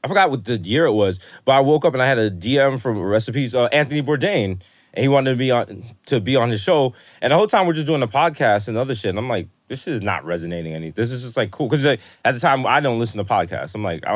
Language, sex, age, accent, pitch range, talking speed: English, male, 20-39, American, 100-135 Hz, 300 wpm